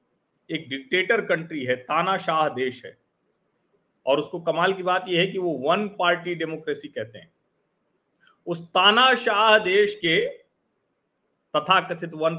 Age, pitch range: 40-59, 135-210 Hz